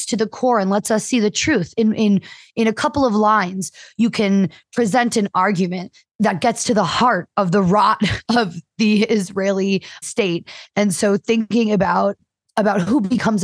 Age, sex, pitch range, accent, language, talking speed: 20-39, female, 195-240 Hz, American, English, 180 wpm